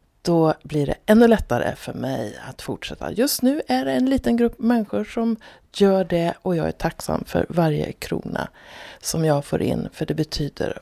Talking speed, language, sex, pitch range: 190 wpm, Swedish, female, 140-190 Hz